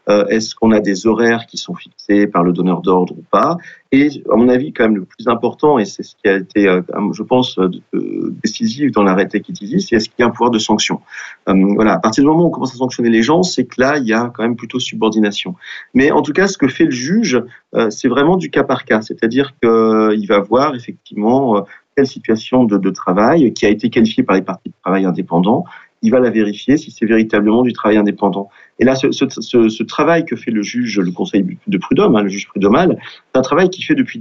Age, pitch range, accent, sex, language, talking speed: 40-59, 100-125 Hz, French, male, French, 240 wpm